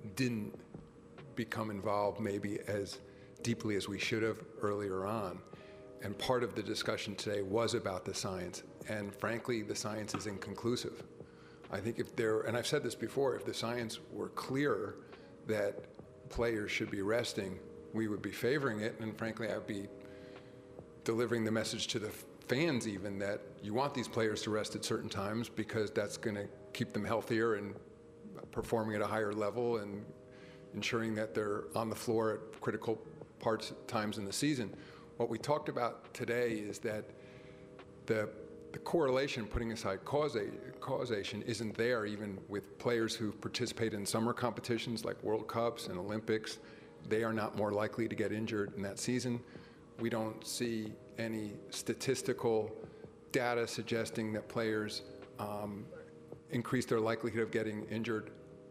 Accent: American